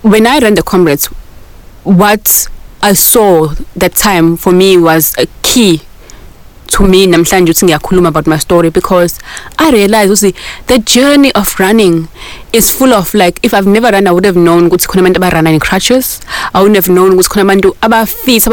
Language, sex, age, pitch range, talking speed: English, female, 20-39, 180-220 Hz, 175 wpm